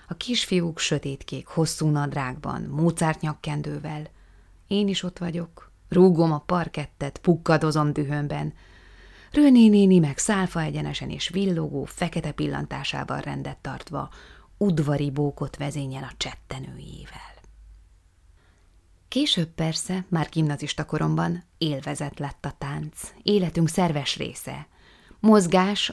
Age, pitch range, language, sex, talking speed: 30-49, 145-175 Hz, Hungarian, female, 100 wpm